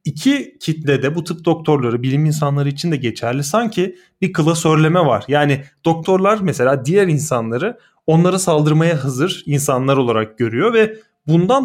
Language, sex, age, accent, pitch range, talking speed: Turkish, male, 30-49, native, 145-180 Hz, 140 wpm